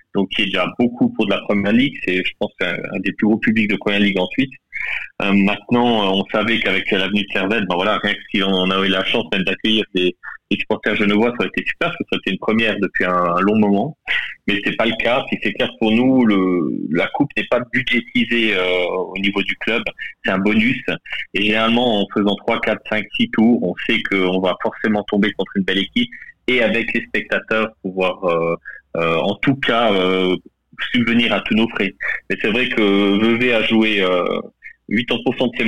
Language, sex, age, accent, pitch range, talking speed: French, male, 30-49, French, 95-115 Hz, 225 wpm